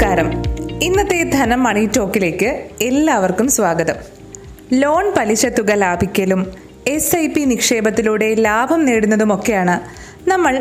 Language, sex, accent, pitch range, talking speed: Malayalam, female, native, 210-300 Hz, 100 wpm